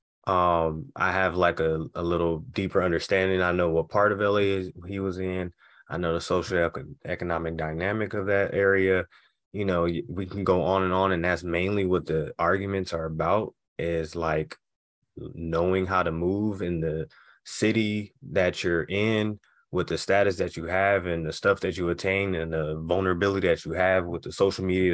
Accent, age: American, 20-39